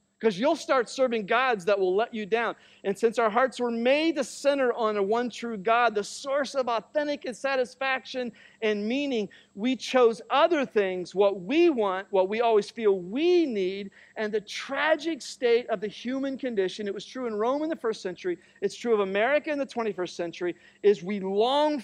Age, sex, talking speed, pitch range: 50-69, male, 200 wpm, 170-235 Hz